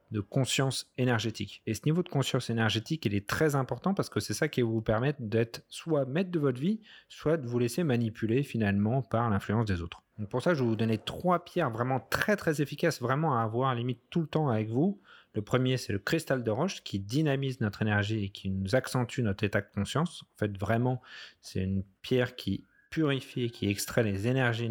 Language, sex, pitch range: French, male, 105-135 Hz